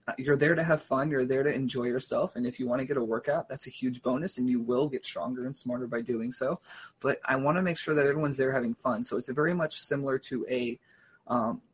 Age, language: 20-39, English